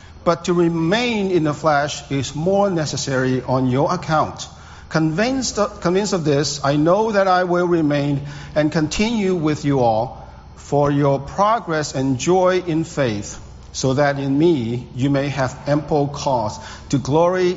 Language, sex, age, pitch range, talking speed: English, male, 50-69, 115-155 Hz, 155 wpm